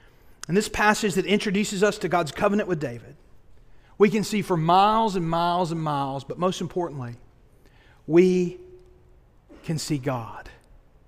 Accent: American